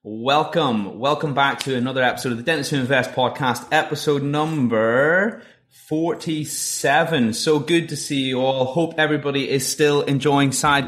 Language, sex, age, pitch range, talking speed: English, male, 20-39, 120-155 Hz, 145 wpm